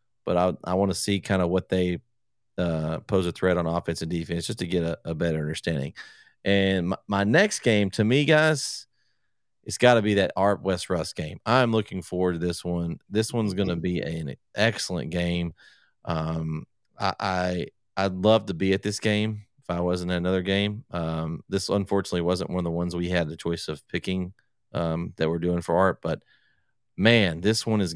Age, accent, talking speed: 40-59, American, 210 wpm